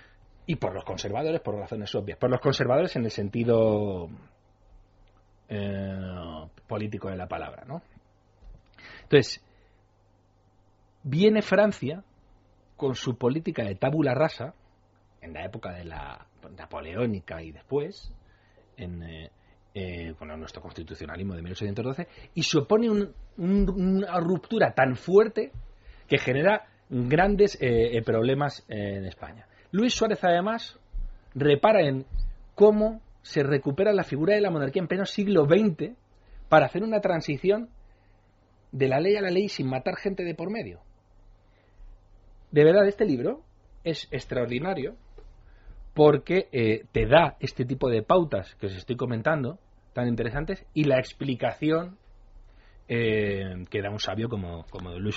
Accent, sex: Spanish, male